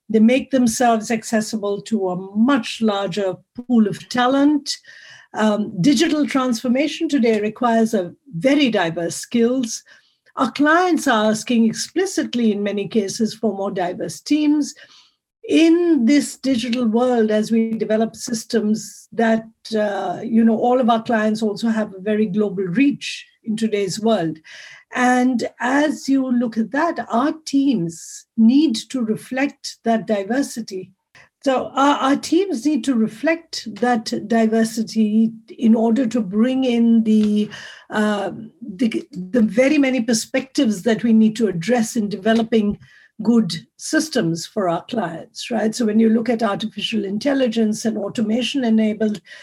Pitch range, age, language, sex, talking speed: 215-260 Hz, 50-69, Polish, female, 135 wpm